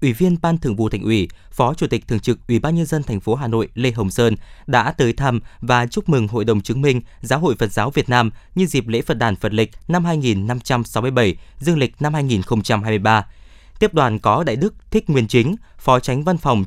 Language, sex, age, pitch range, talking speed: Vietnamese, male, 20-39, 115-150 Hz, 230 wpm